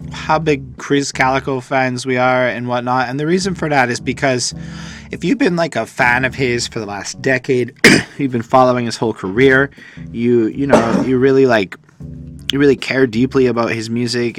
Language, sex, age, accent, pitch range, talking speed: English, male, 20-39, American, 100-130 Hz, 195 wpm